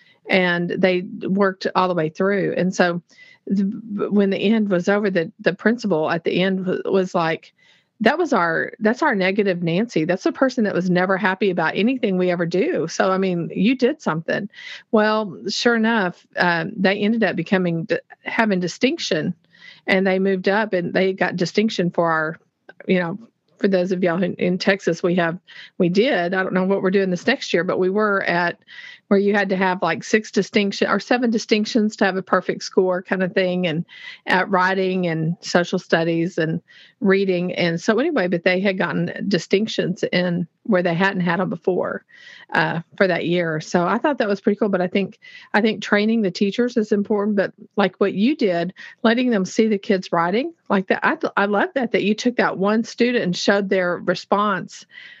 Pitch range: 180-215 Hz